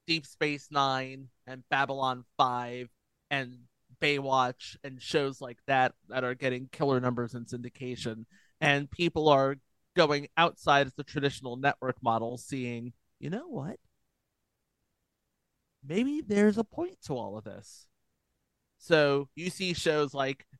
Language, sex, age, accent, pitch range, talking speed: English, male, 30-49, American, 125-160 Hz, 135 wpm